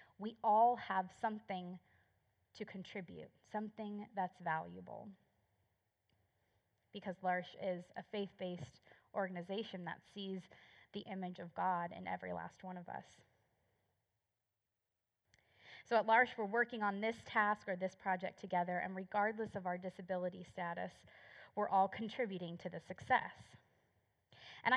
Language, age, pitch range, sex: English, 20-39, 180-210 Hz, female